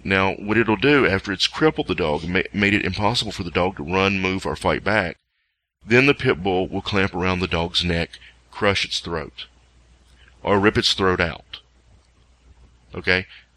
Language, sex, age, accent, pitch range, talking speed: English, male, 40-59, American, 80-100 Hz, 175 wpm